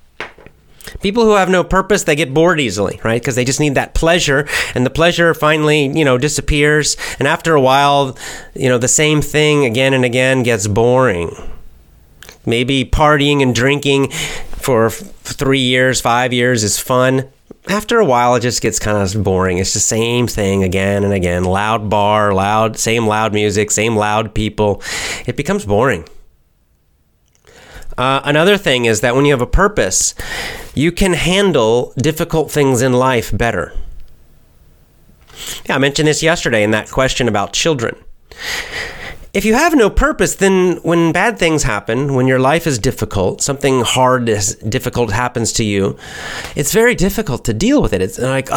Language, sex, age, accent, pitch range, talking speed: English, male, 30-49, American, 110-155 Hz, 165 wpm